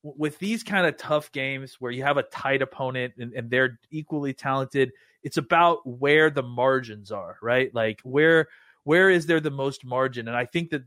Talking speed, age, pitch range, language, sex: 200 wpm, 30-49, 120-145 Hz, English, male